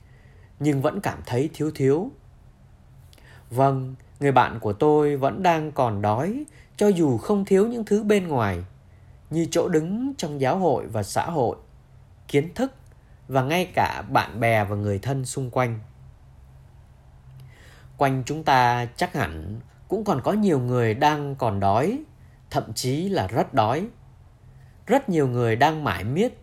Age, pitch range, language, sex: 20-39, 110-155 Hz, Vietnamese, male